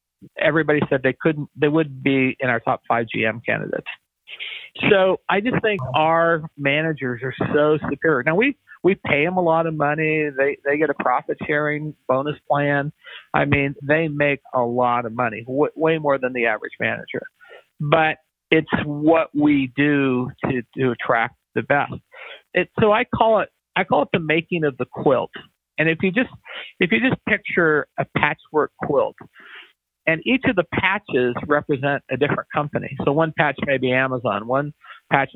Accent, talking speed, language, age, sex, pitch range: American, 180 wpm, English, 50-69, male, 130-165 Hz